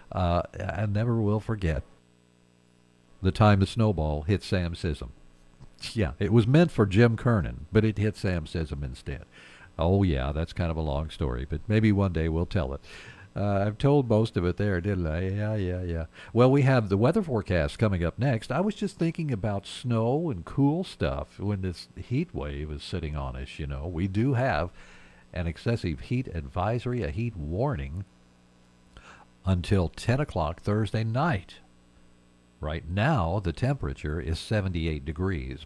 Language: English